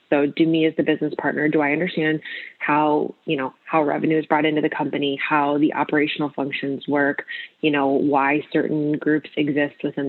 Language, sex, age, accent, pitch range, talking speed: English, female, 20-39, American, 145-160 Hz, 190 wpm